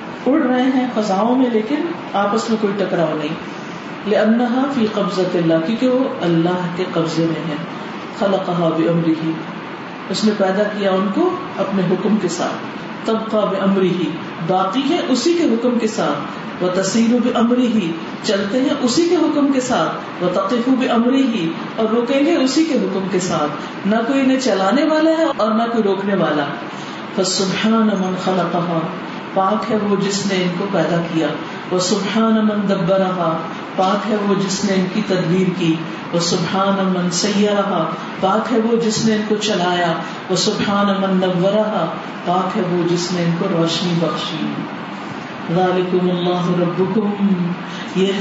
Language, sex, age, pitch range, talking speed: Urdu, female, 40-59, 180-220 Hz, 130 wpm